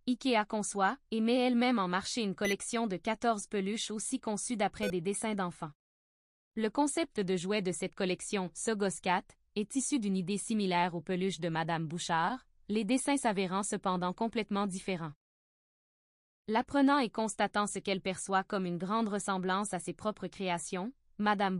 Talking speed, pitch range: 160 wpm, 185-220 Hz